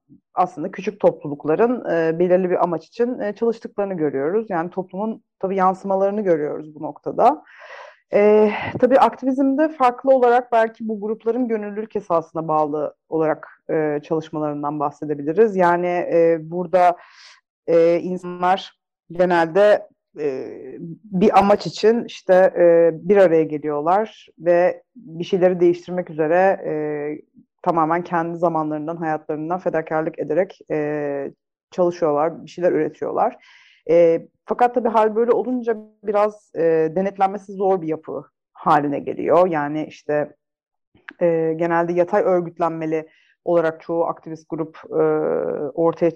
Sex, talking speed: female, 120 wpm